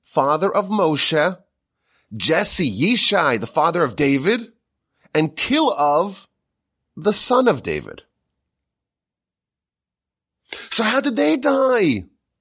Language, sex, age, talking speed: English, male, 30-49, 95 wpm